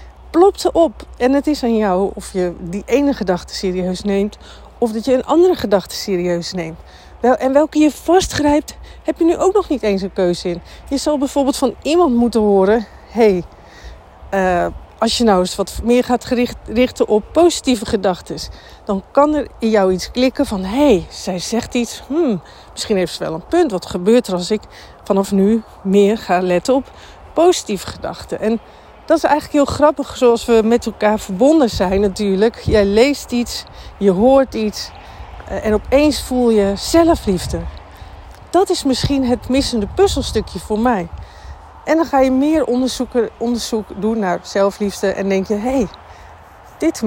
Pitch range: 195-270 Hz